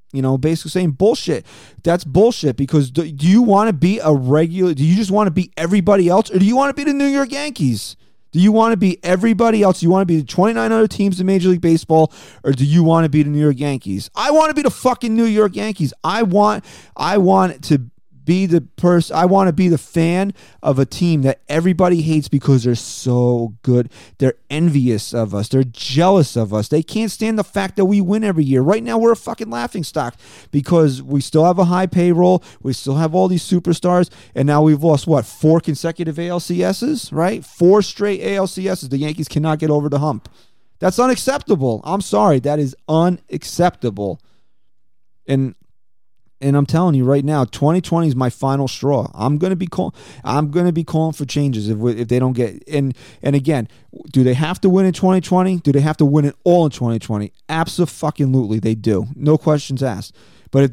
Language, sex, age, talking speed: English, male, 30-49, 210 wpm